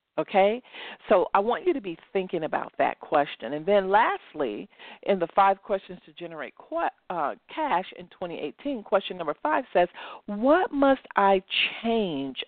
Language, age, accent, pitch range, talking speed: English, 50-69, American, 165-215 Hz, 150 wpm